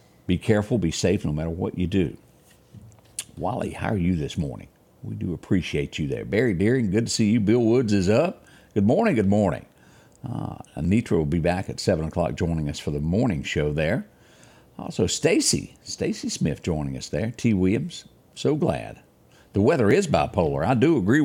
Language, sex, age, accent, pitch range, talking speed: English, male, 60-79, American, 85-110 Hz, 190 wpm